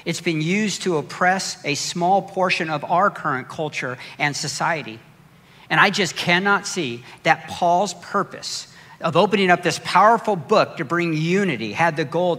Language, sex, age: English, male, 50-69